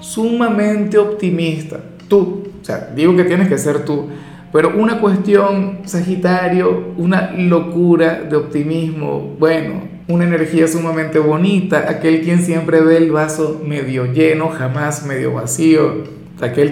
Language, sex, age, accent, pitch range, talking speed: Spanish, male, 50-69, Venezuelan, 150-190 Hz, 130 wpm